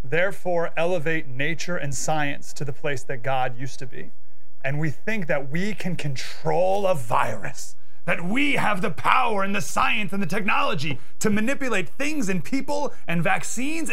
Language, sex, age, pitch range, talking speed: English, male, 30-49, 135-190 Hz, 170 wpm